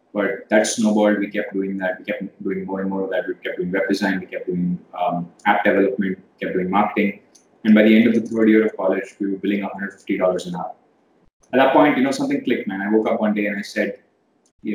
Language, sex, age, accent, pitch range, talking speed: Hindi, male, 20-39, native, 95-110 Hz, 265 wpm